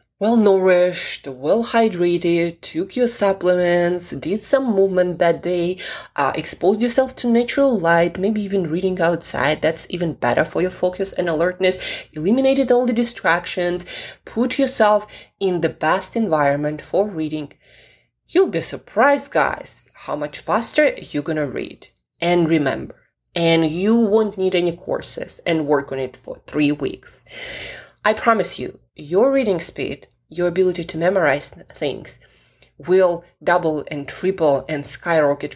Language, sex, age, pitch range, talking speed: English, female, 20-39, 155-215 Hz, 140 wpm